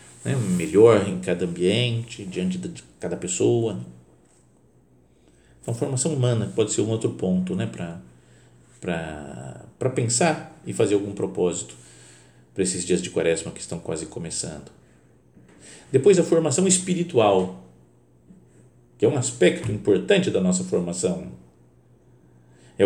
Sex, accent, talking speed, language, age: male, Brazilian, 120 wpm, Portuguese, 50-69